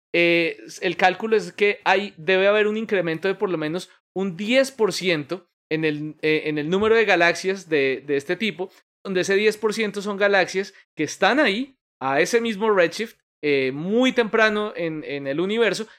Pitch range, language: 150-195 Hz, Spanish